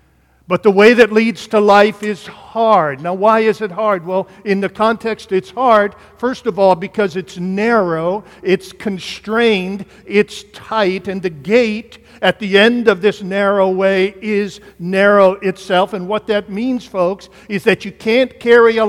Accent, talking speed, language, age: American, 170 wpm, English, 50-69